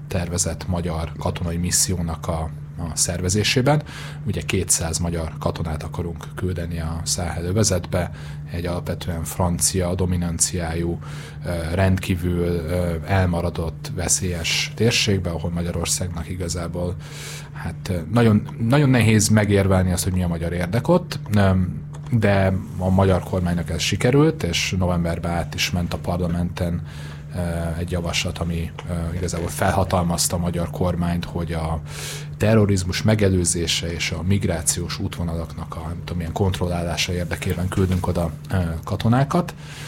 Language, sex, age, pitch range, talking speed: Hungarian, male, 30-49, 85-100 Hz, 110 wpm